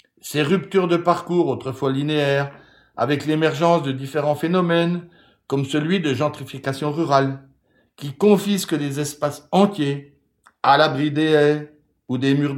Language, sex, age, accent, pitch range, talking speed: French, male, 60-79, French, 125-165 Hz, 135 wpm